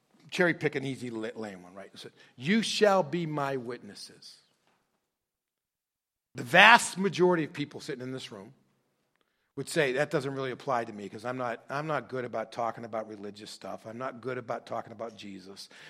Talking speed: 180 wpm